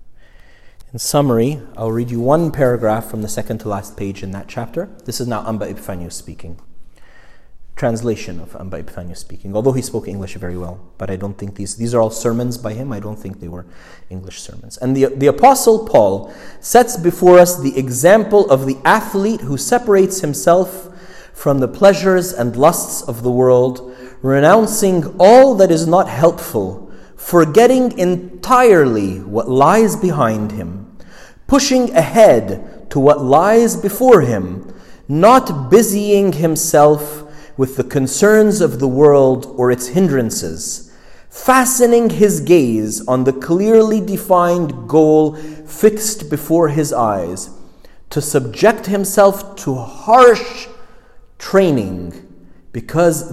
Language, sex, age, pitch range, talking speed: English, male, 30-49, 115-190 Hz, 140 wpm